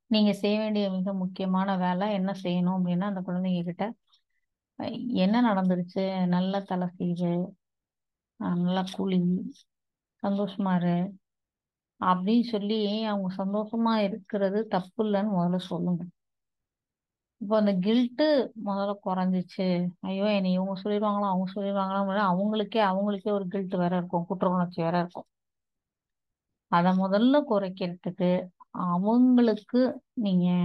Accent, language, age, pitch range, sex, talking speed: native, Tamil, 30-49, 185-210 Hz, female, 110 wpm